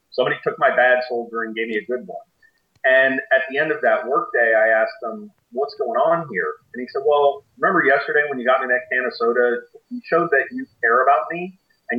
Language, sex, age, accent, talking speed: English, male, 40-59, American, 240 wpm